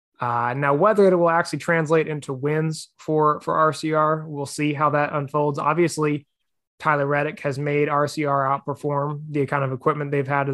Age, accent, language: 20-39, American, English